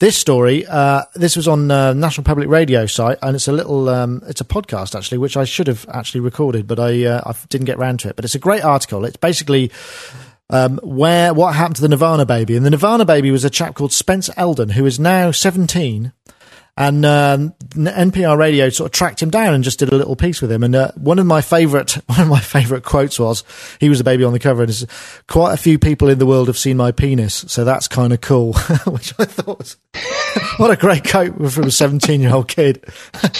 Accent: British